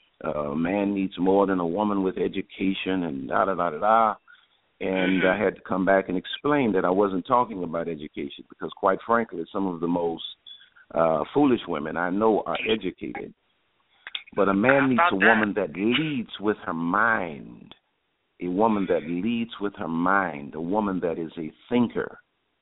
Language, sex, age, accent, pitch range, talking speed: English, male, 50-69, American, 85-110 Hz, 170 wpm